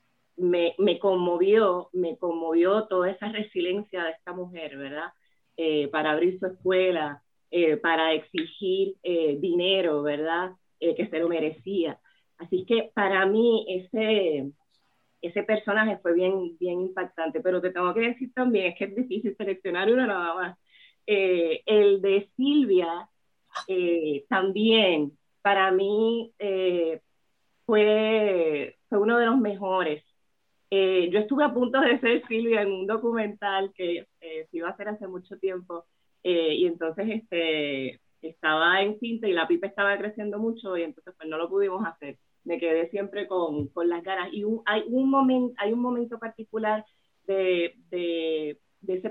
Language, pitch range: Spanish, 170-215 Hz